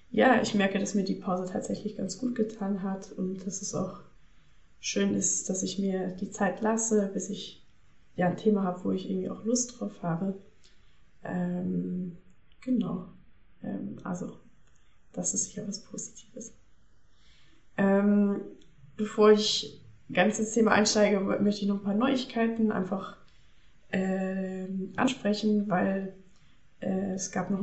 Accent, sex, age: German, female, 20-39